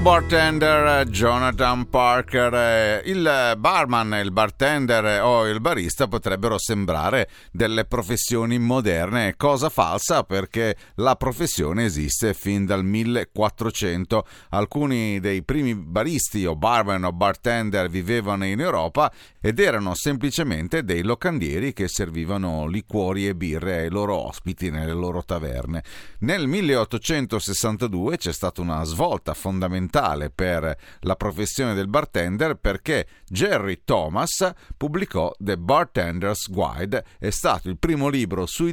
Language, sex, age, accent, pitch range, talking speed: Italian, male, 40-59, native, 95-125 Hz, 120 wpm